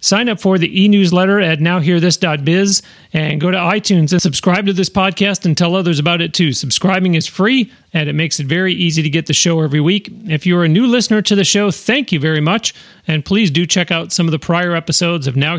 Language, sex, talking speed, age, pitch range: English, male, 235 wpm, 40-59, 150-180 Hz